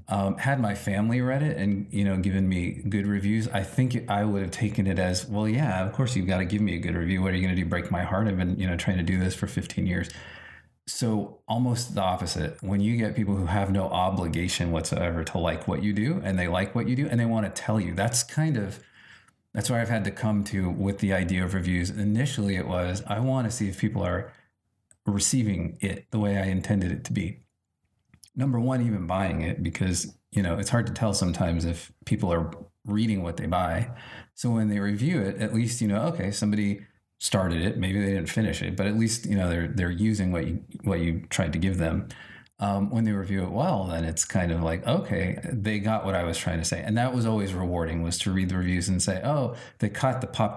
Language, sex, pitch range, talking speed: English, male, 90-110 Hz, 245 wpm